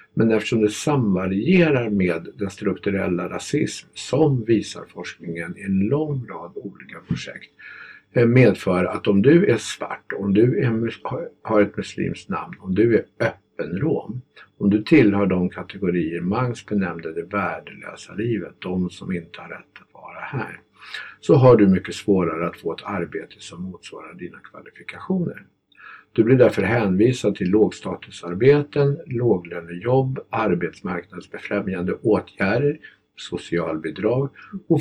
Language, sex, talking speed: Swedish, male, 135 wpm